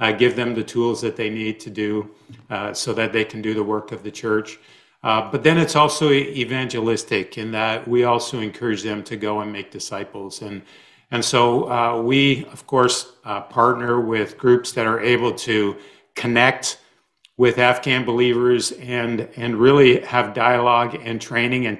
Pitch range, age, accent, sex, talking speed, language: 110-135 Hz, 50-69, American, male, 180 wpm, English